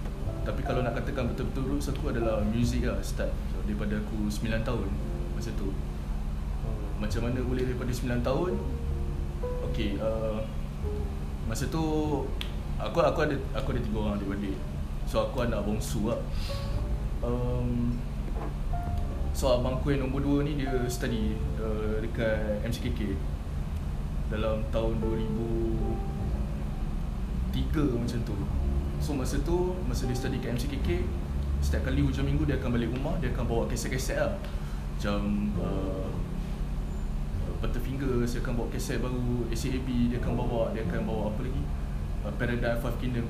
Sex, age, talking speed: male, 20-39, 145 wpm